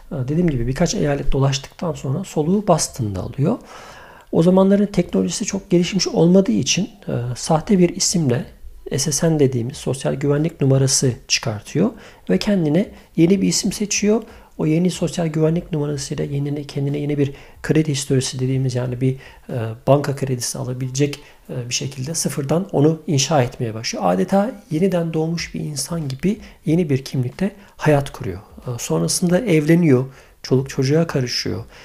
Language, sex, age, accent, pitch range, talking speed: Turkish, male, 50-69, native, 135-170 Hz, 140 wpm